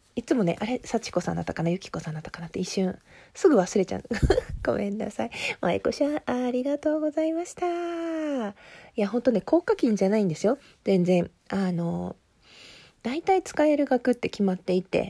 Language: Japanese